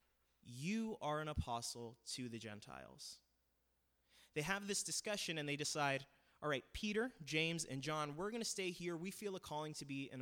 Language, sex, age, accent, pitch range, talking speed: English, male, 20-39, American, 115-155 Hz, 190 wpm